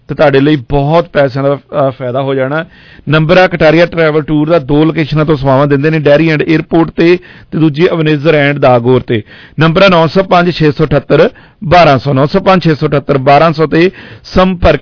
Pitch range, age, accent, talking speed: 140-170 Hz, 50-69, Indian, 130 wpm